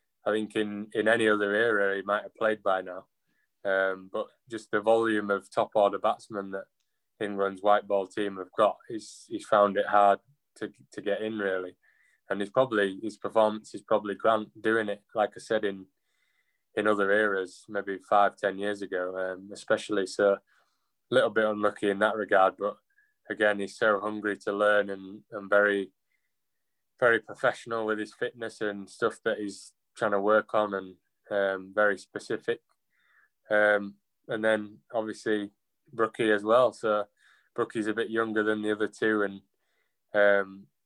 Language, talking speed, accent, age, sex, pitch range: English, 170 wpm, British, 20-39, male, 100-110 Hz